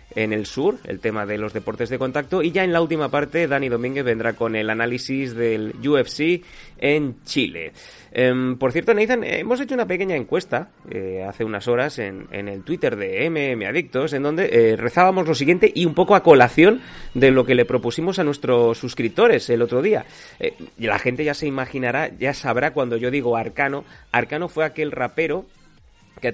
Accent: Spanish